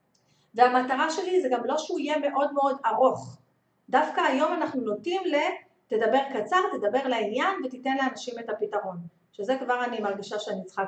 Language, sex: Hebrew, female